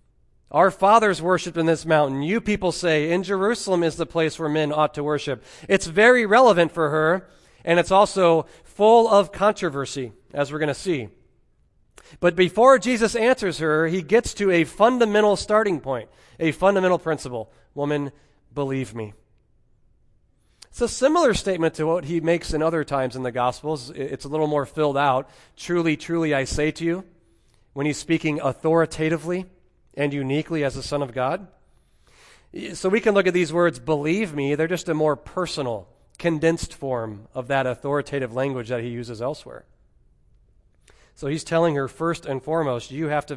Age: 40-59